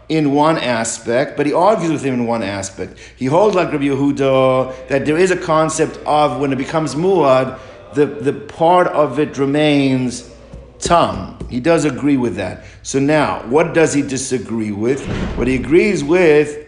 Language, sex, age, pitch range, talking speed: English, male, 50-69, 135-165 Hz, 175 wpm